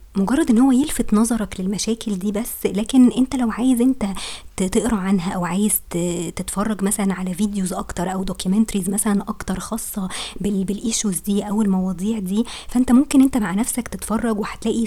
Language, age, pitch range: Arabic, 20-39, 195-230 Hz